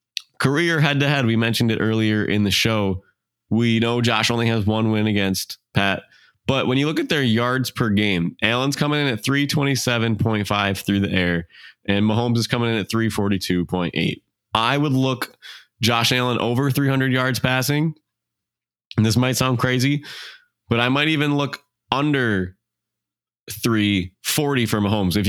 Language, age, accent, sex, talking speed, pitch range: English, 20-39, American, male, 185 wpm, 105-130 Hz